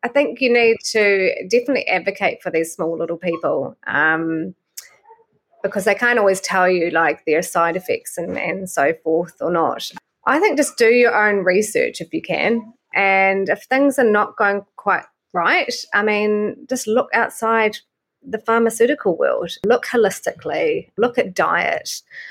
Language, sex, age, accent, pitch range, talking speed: English, female, 30-49, Australian, 180-235 Hz, 160 wpm